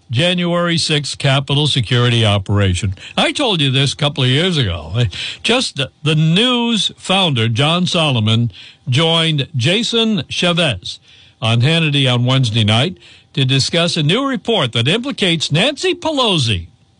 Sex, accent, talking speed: male, American, 135 wpm